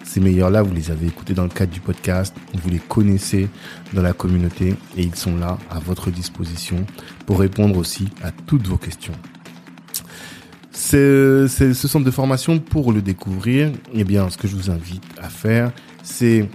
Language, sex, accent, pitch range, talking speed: French, male, French, 90-105 Hz, 185 wpm